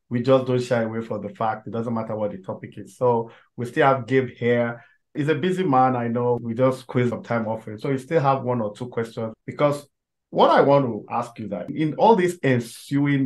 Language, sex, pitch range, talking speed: English, male, 110-130 Hz, 245 wpm